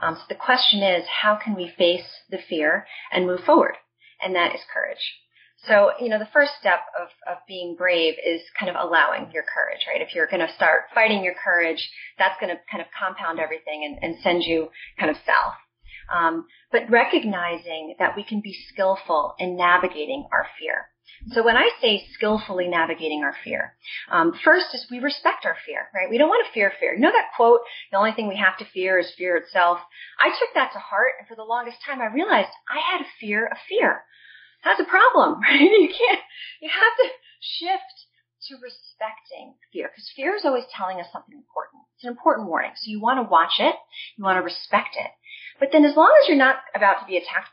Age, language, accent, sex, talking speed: 30-49, English, American, female, 215 wpm